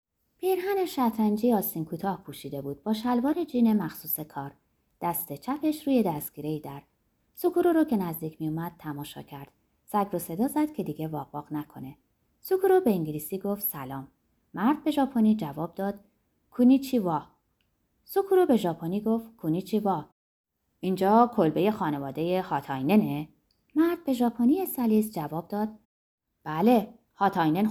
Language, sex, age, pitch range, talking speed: Persian, female, 30-49, 145-230 Hz, 135 wpm